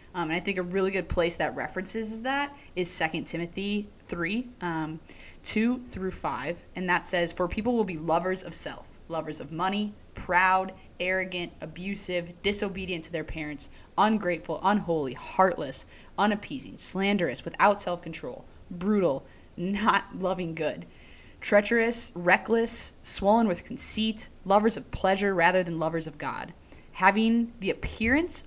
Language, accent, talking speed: English, American, 140 wpm